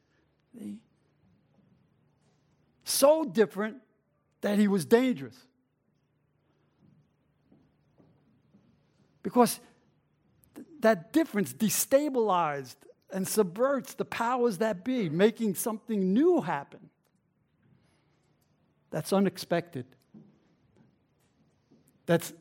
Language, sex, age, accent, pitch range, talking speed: English, male, 70-89, American, 175-255 Hz, 60 wpm